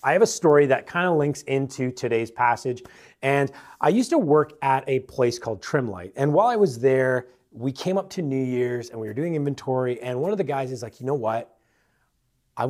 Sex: male